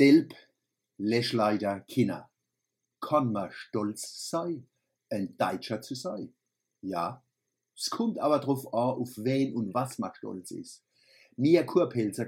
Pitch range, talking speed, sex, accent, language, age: 105-130 Hz, 125 wpm, male, German, German, 50-69